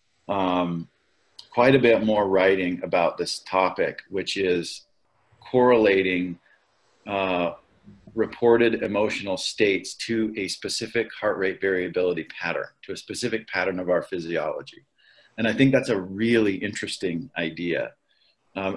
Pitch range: 90-110 Hz